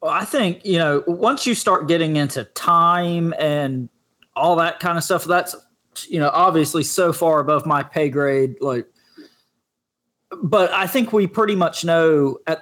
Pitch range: 140-175 Hz